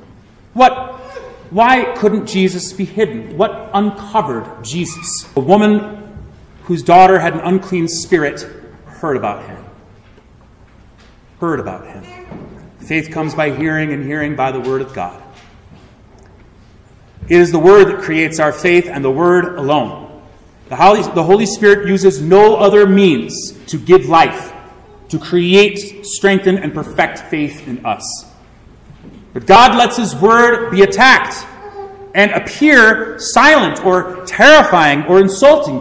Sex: male